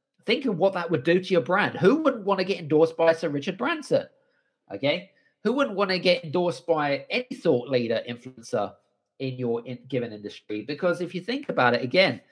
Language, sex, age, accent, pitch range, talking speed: English, male, 40-59, British, 125-170 Hz, 205 wpm